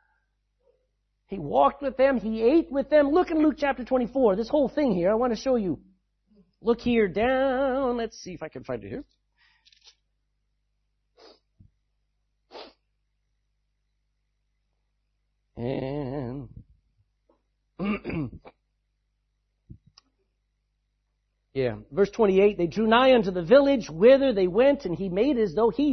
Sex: male